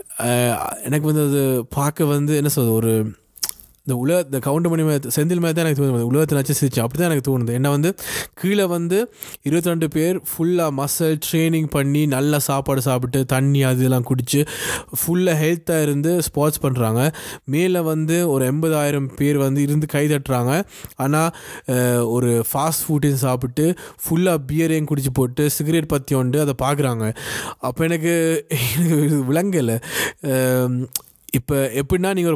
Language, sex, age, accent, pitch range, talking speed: Tamil, male, 20-39, native, 130-160 Hz, 135 wpm